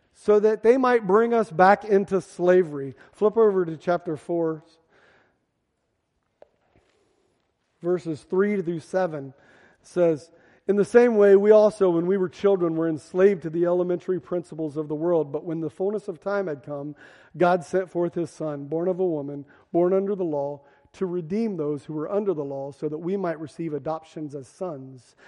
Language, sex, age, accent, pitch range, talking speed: English, male, 40-59, American, 160-195 Hz, 180 wpm